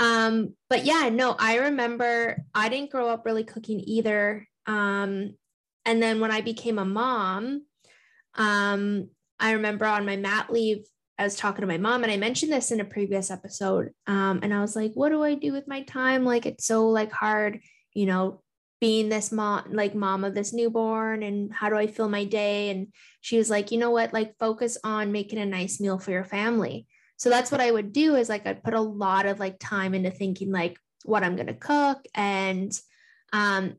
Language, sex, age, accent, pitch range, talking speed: English, female, 10-29, American, 200-235 Hz, 210 wpm